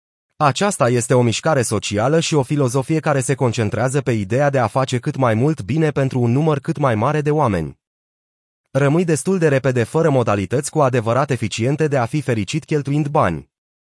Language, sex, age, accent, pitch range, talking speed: Romanian, male, 30-49, native, 115-150 Hz, 185 wpm